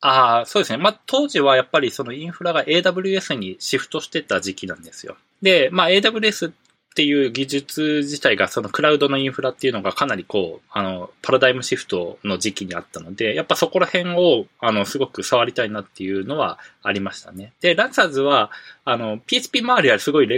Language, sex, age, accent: Japanese, male, 20-39, native